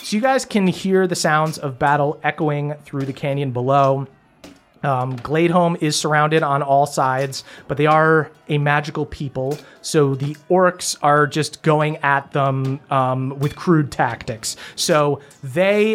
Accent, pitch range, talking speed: American, 140-160 Hz, 155 wpm